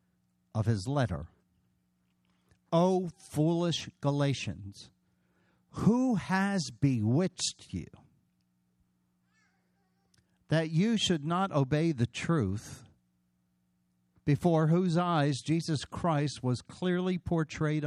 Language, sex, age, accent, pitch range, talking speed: English, male, 50-69, American, 90-150 Hz, 85 wpm